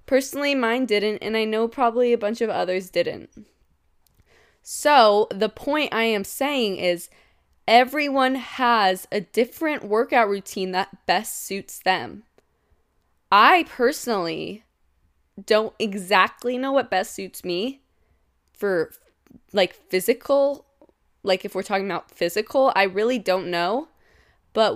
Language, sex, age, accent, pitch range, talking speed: English, female, 20-39, American, 195-245 Hz, 125 wpm